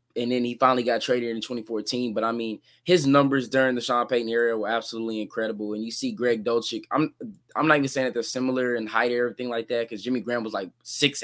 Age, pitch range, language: 20-39, 115-140 Hz, English